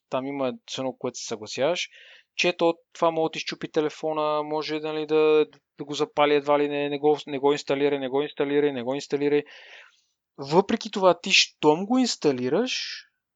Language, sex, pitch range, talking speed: Bulgarian, male, 140-185 Hz, 170 wpm